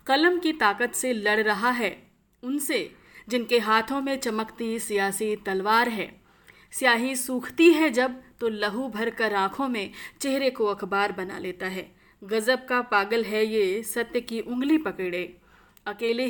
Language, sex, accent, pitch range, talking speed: Hindi, female, native, 200-250 Hz, 150 wpm